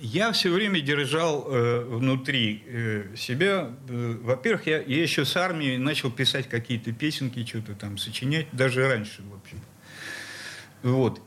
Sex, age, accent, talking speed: male, 50-69, native, 140 wpm